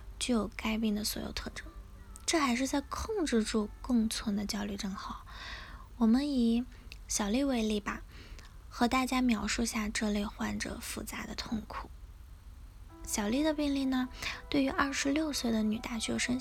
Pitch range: 220-260 Hz